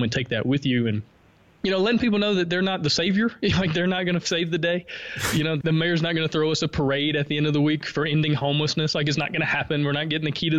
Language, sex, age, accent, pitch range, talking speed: English, male, 20-39, American, 130-160 Hz, 315 wpm